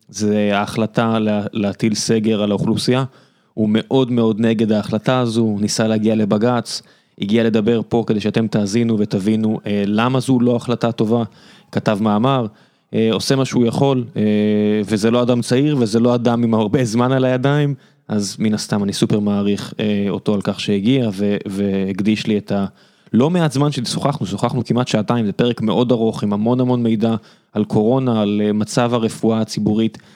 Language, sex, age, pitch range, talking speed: Hebrew, male, 20-39, 110-130 Hz, 170 wpm